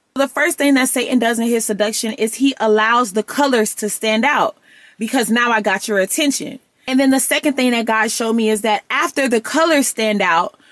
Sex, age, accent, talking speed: female, 20-39, American, 220 wpm